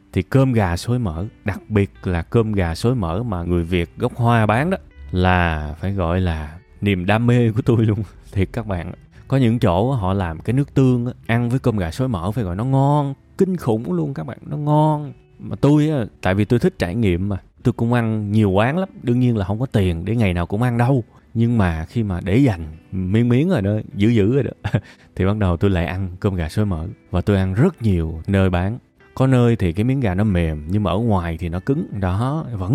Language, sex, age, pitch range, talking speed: Vietnamese, male, 20-39, 95-125 Hz, 240 wpm